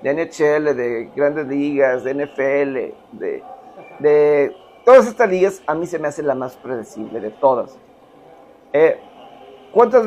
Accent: Mexican